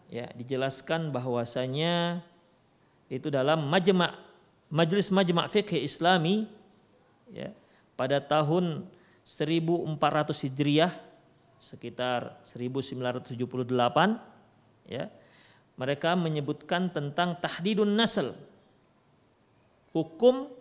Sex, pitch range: male, 130-175 Hz